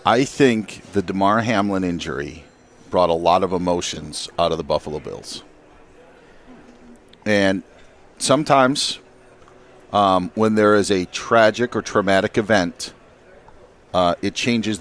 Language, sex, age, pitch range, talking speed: English, male, 40-59, 95-125 Hz, 120 wpm